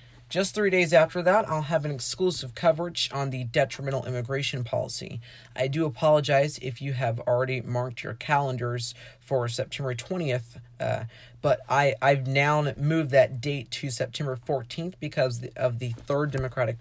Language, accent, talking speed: English, American, 155 wpm